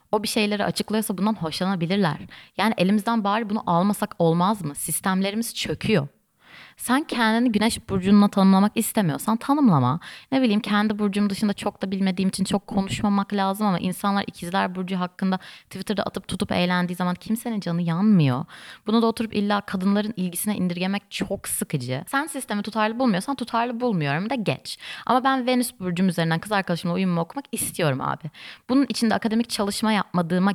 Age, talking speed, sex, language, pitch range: 20-39, 155 wpm, female, Turkish, 175-220 Hz